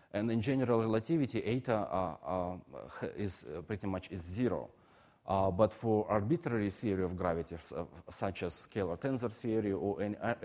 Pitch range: 95-120 Hz